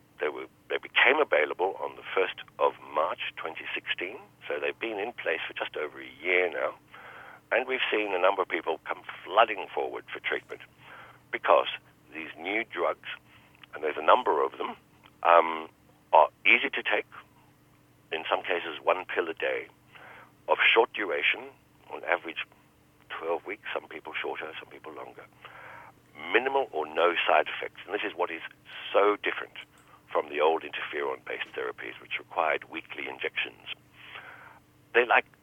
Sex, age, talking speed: male, 60-79, 155 wpm